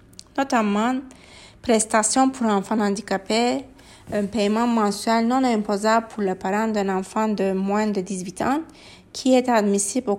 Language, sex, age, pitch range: English, female, 30-49, 195-235 Hz